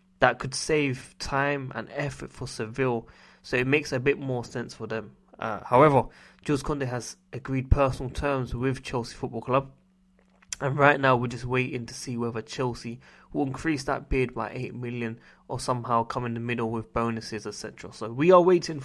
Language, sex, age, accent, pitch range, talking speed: English, male, 20-39, British, 115-145 Hz, 190 wpm